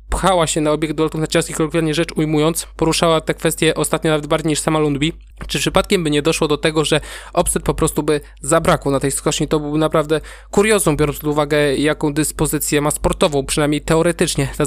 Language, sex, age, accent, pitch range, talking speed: Polish, male, 20-39, native, 145-165 Hz, 200 wpm